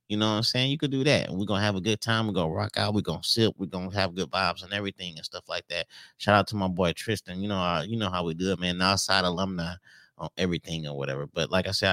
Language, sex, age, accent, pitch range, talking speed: English, male, 30-49, American, 95-115 Hz, 300 wpm